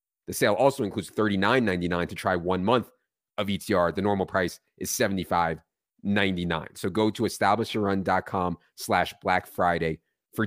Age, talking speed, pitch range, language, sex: 30-49, 140 wpm, 90-105 Hz, English, male